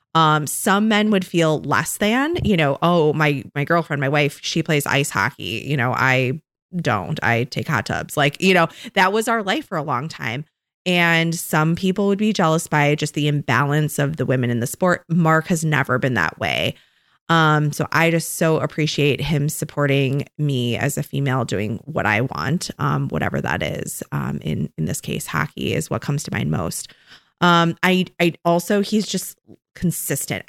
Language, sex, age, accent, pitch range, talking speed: English, female, 20-39, American, 145-175 Hz, 195 wpm